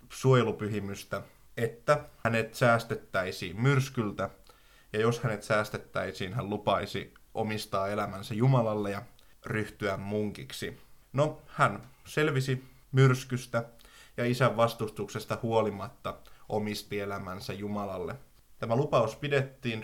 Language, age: Finnish, 20-39